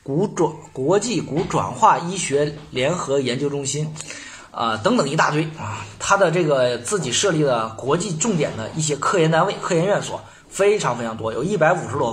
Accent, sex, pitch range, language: native, male, 120-160 Hz, Chinese